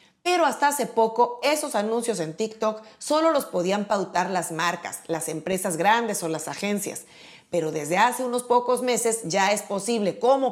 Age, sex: 40-59, female